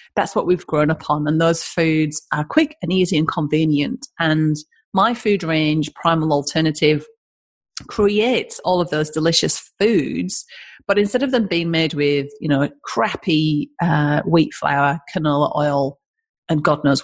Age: 30-49